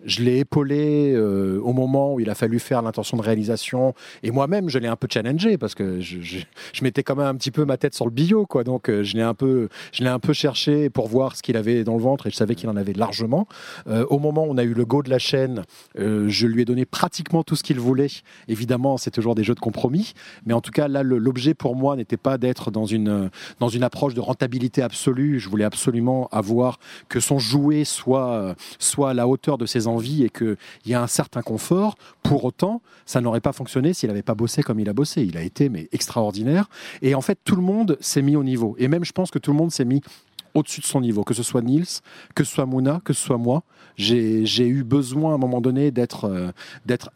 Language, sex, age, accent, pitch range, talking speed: French, male, 30-49, French, 115-145 Hz, 255 wpm